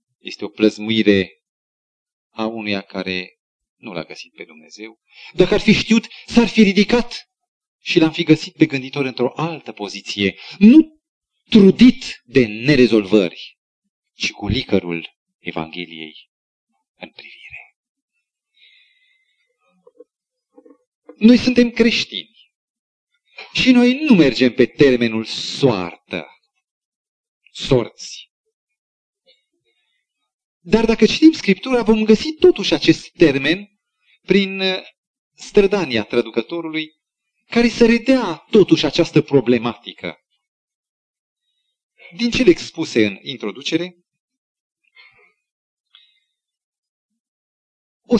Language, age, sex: Romanian, 40-59, male